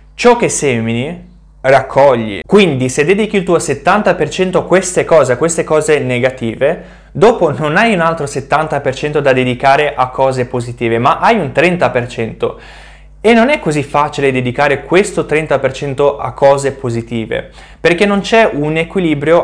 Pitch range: 130-170 Hz